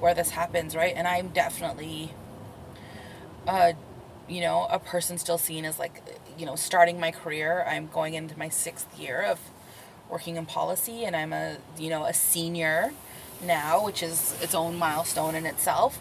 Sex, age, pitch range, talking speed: female, 20-39, 160-175 Hz, 170 wpm